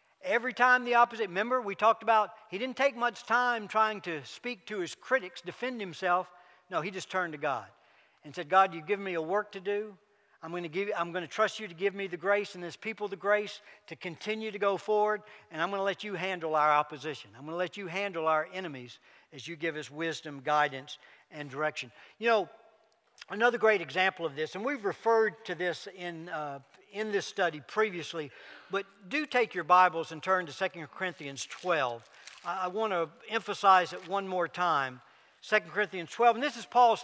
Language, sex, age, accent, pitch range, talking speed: English, male, 60-79, American, 175-225 Hz, 210 wpm